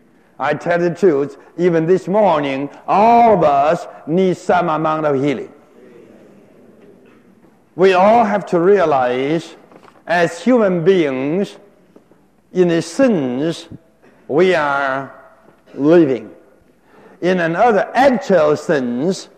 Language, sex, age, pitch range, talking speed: English, male, 60-79, 135-200 Hz, 100 wpm